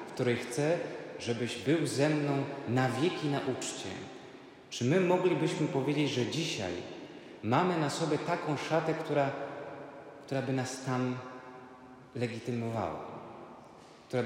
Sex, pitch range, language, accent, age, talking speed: male, 115-140 Hz, Polish, native, 30-49, 120 wpm